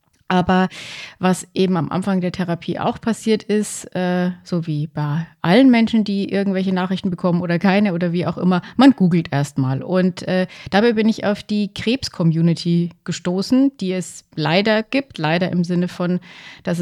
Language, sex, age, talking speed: German, female, 30-49, 160 wpm